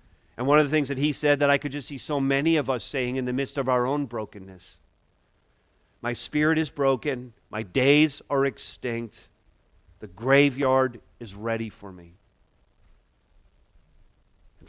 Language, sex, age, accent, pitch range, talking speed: English, male, 40-59, American, 100-155 Hz, 165 wpm